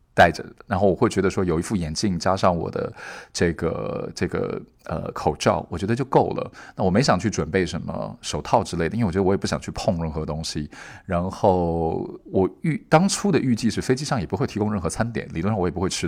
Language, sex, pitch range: Chinese, male, 85-105 Hz